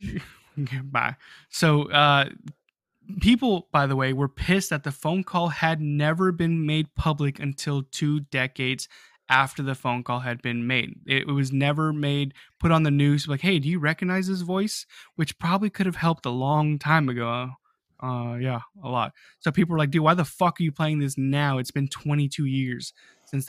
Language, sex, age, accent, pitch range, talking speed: English, male, 20-39, American, 135-175 Hz, 195 wpm